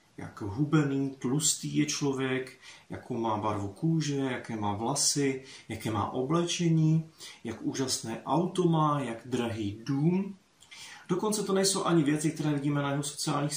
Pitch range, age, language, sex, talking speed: 125-155 Hz, 30-49, Czech, male, 140 wpm